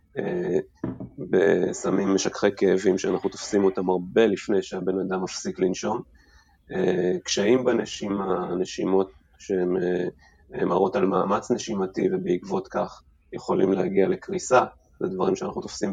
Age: 30-49